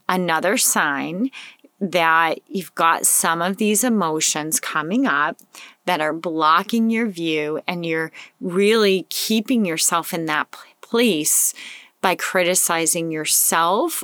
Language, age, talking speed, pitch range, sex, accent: English, 30-49, 115 wpm, 170-220 Hz, female, American